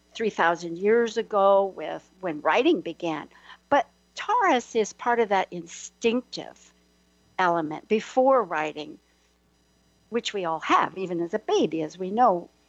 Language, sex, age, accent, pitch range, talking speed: English, female, 60-79, American, 170-225 Hz, 130 wpm